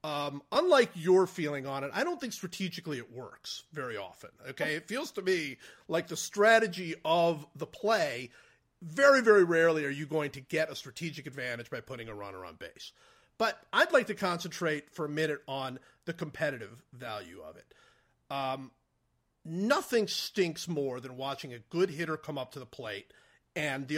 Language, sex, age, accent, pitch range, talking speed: English, male, 40-59, American, 145-200 Hz, 180 wpm